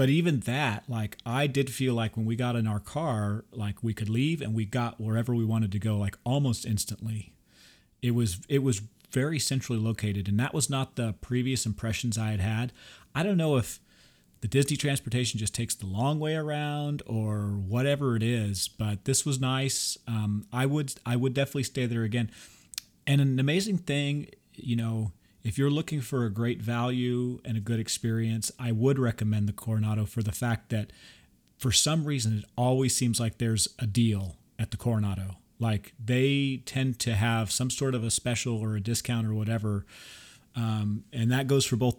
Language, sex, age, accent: English, male, 40-59, American